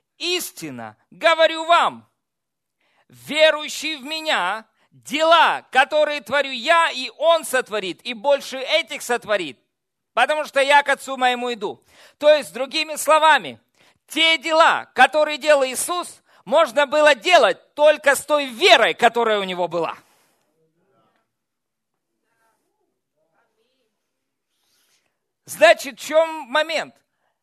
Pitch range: 235-310 Hz